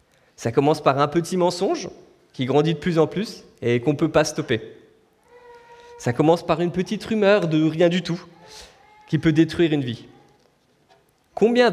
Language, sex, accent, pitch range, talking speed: French, male, French, 135-180 Hz, 175 wpm